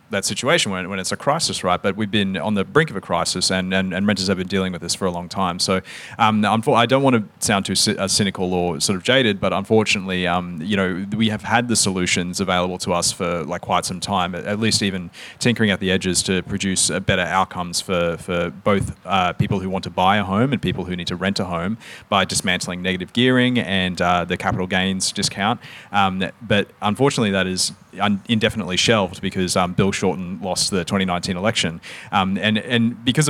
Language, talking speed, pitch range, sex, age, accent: English, 215 wpm, 90-105 Hz, male, 30-49, Australian